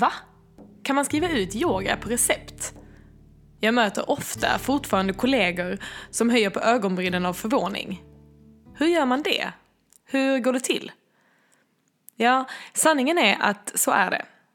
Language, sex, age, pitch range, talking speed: Swedish, female, 20-39, 195-250 Hz, 140 wpm